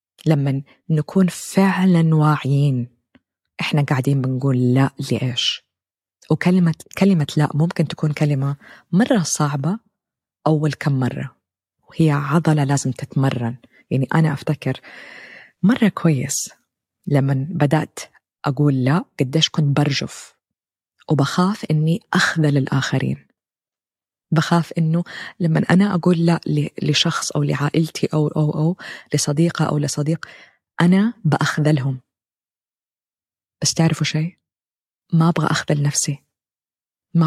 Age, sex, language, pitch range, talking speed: 20-39, female, Arabic, 145-170 Hz, 105 wpm